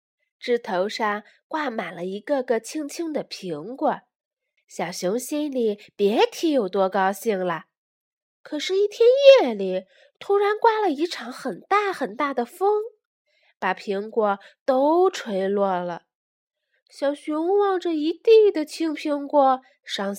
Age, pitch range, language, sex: 20-39, 235-355 Hz, Chinese, female